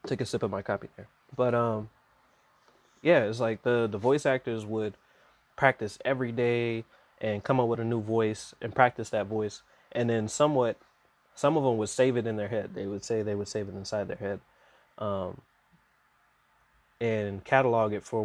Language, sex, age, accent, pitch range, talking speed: English, male, 20-39, American, 105-125 Hz, 190 wpm